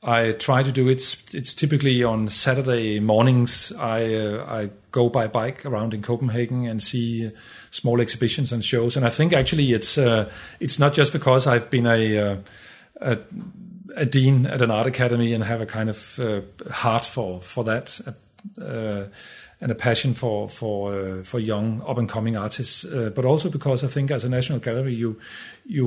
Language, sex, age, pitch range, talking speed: English, male, 40-59, 110-135 Hz, 190 wpm